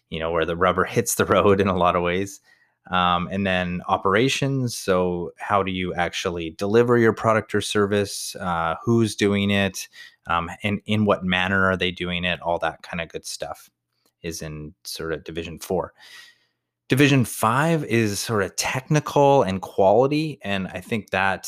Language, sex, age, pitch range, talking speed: English, male, 30-49, 85-105 Hz, 180 wpm